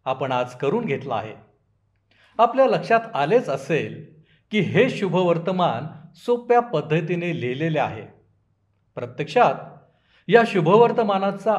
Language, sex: Marathi, male